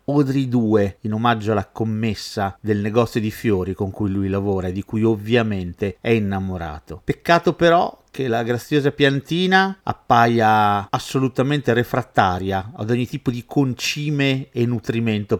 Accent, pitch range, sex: native, 100-140 Hz, male